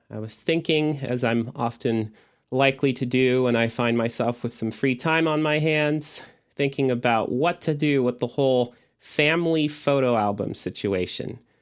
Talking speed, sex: 165 wpm, male